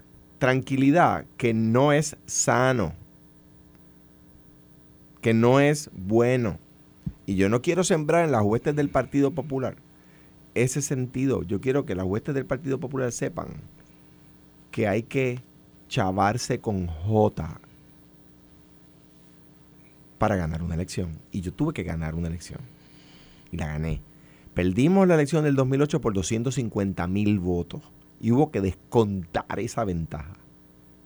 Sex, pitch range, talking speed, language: male, 85-135 Hz, 130 wpm, Spanish